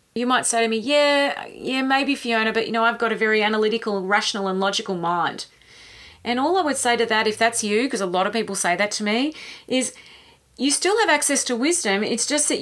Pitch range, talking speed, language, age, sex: 210-275 Hz, 240 wpm, English, 30-49, female